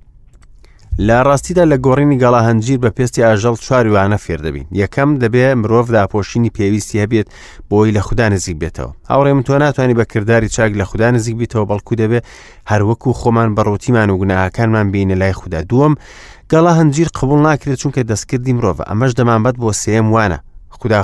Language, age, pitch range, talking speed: English, 30-49, 100-130 Hz, 165 wpm